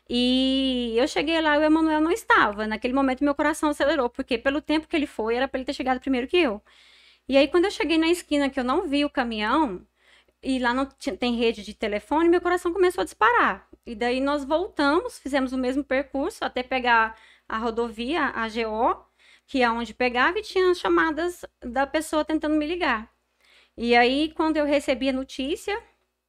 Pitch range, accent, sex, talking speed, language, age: 230-310 Hz, Brazilian, female, 195 wpm, Portuguese, 20-39